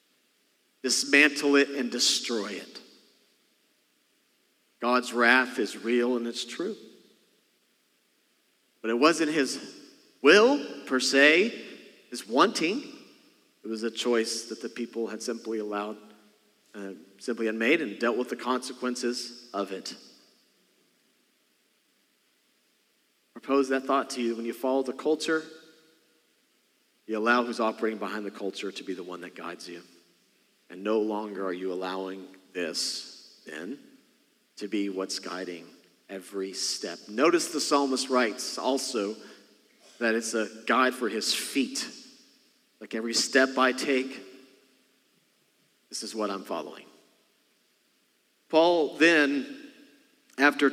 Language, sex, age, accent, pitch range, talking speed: English, male, 40-59, American, 110-145 Hz, 125 wpm